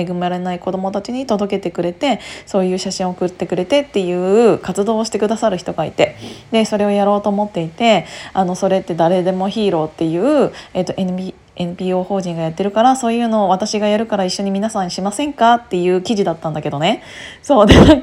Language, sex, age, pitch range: Japanese, female, 20-39, 180-260 Hz